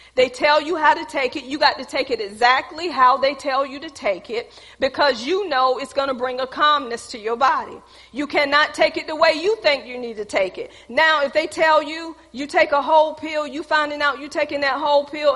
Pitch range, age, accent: 270-330 Hz, 40-59, American